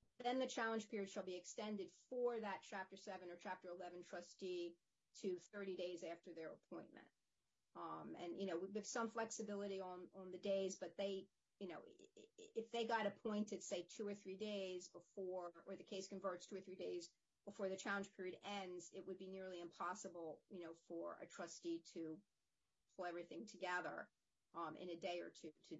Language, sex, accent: English, female, American